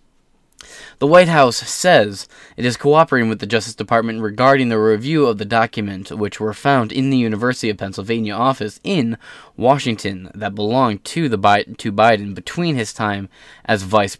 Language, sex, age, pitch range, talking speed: English, male, 20-39, 100-120 Hz, 165 wpm